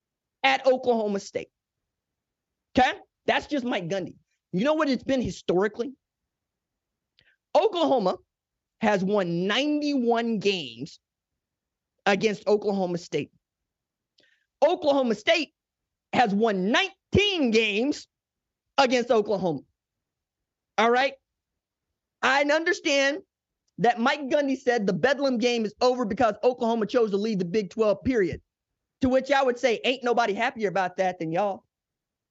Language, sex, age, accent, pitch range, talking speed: English, male, 30-49, American, 200-265 Hz, 120 wpm